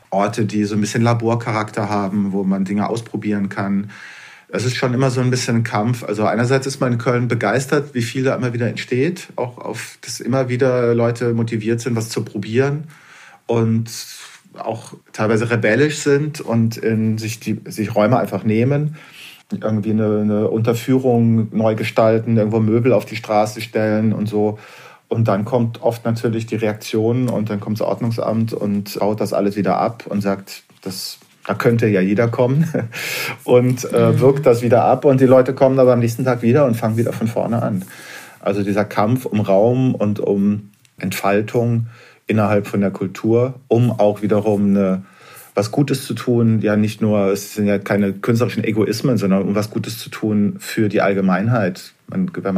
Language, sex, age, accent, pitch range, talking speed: German, male, 40-59, German, 105-120 Hz, 175 wpm